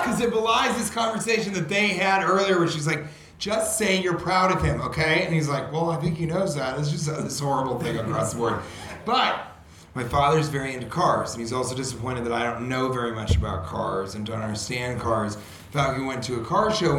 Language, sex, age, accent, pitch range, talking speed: English, male, 30-49, American, 120-180 Hz, 235 wpm